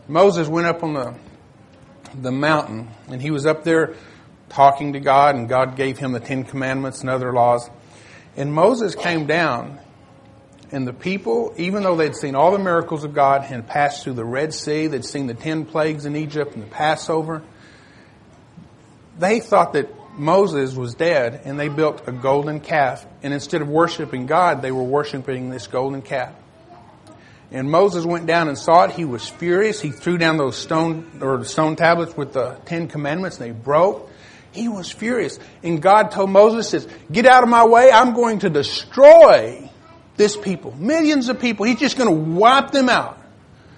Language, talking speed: English, 180 wpm